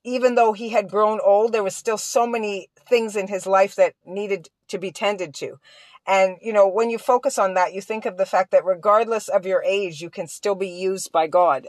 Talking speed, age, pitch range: 235 wpm, 40-59, 185-220 Hz